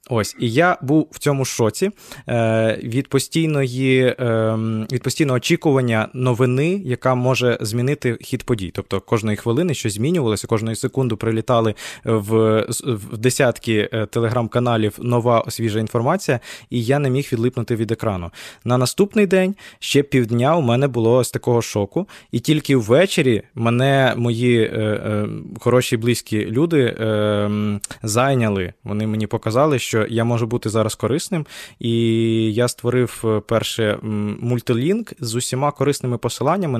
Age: 20-39